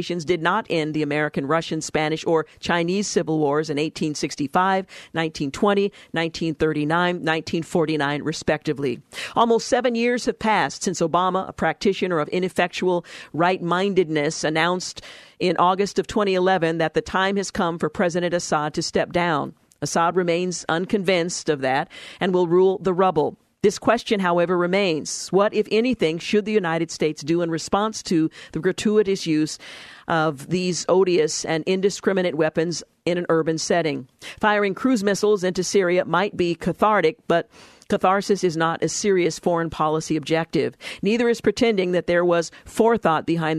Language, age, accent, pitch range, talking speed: English, 50-69, American, 160-195 Hz, 150 wpm